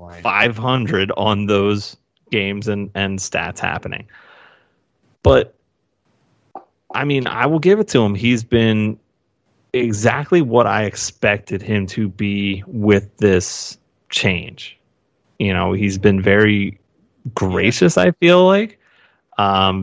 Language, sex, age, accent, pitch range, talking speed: English, male, 30-49, American, 100-120 Hz, 120 wpm